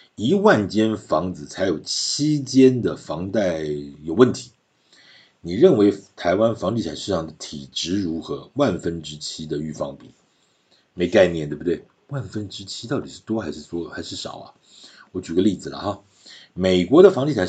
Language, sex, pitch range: Chinese, male, 85-110 Hz